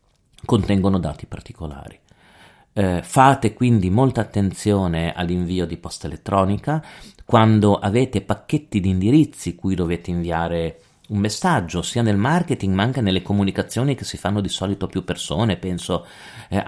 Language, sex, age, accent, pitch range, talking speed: Italian, male, 40-59, native, 85-105 Hz, 140 wpm